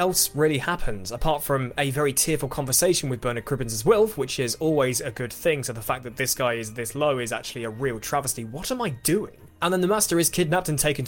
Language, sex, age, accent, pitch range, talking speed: English, male, 20-39, British, 130-180 Hz, 250 wpm